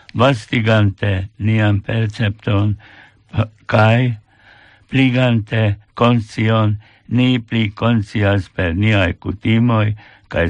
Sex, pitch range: male, 100-115 Hz